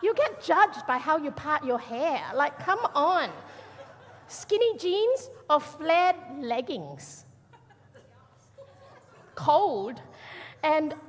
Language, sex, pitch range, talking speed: English, female, 215-330 Hz, 105 wpm